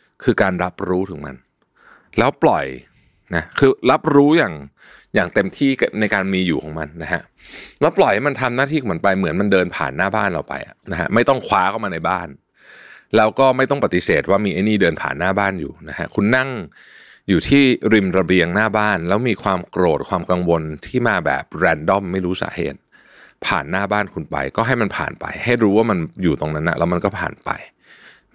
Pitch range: 85-130 Hz